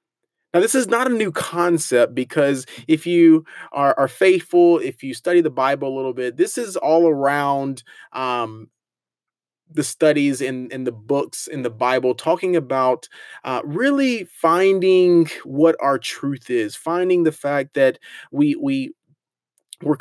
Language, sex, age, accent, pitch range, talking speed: English, male, 30-49, American, 125-175 Hz, 155 wpm